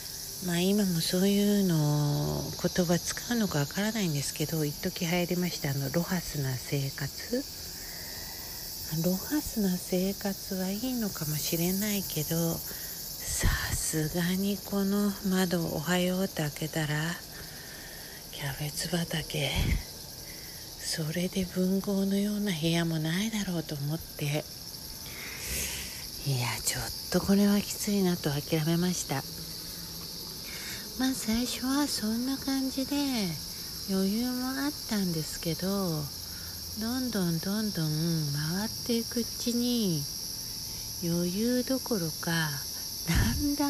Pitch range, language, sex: 155-215 Hz, Japanese, female